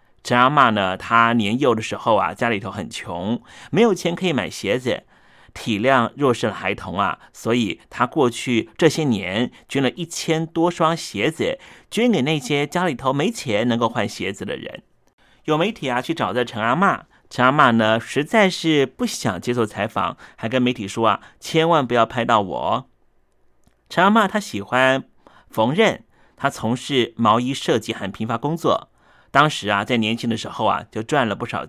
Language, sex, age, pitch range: Chinese, male, 30-49, 115-165 Hz